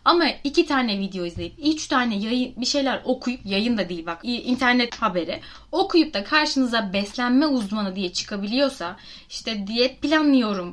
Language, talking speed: Turkish, 150 wpm